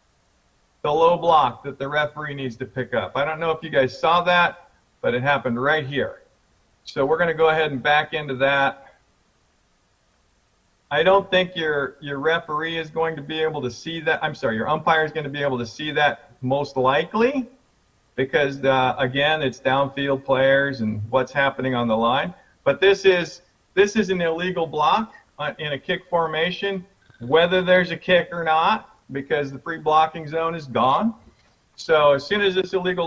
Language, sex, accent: English, male, American